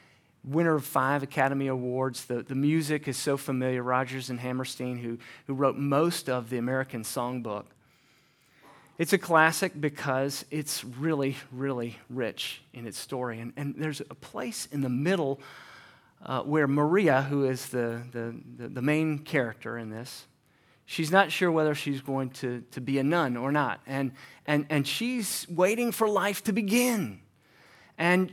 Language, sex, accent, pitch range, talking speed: English, male, American, 130-165 Hz, 165 wpm